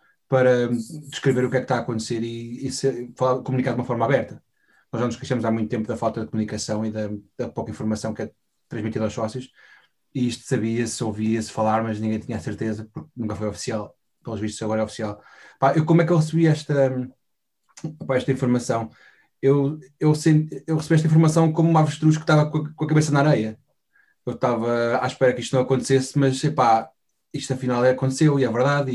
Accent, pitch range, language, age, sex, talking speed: Portuguese, 110-135 Hz, Portuguese, 20-39, male, 220 wpm